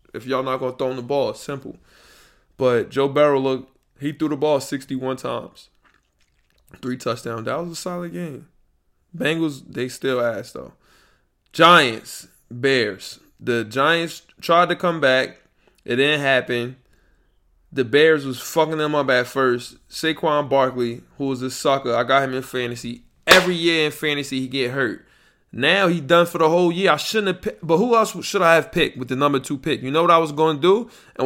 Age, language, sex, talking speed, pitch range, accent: 20-39, English, male, 195 wpm, 130-170 Hz, American